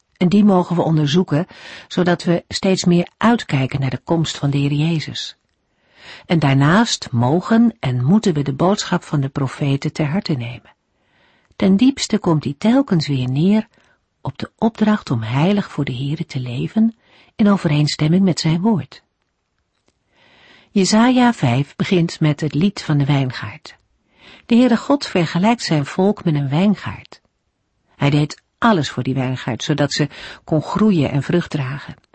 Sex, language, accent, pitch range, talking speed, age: female, Dutch, Dutch, 140-195 Hz, 155 wpm, 50-69